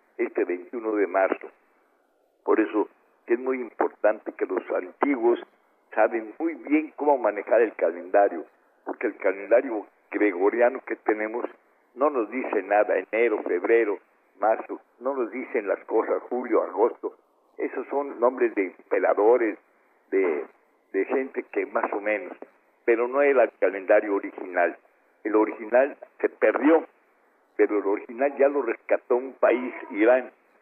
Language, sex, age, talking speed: Spanish, male, 60-79, 135 wpm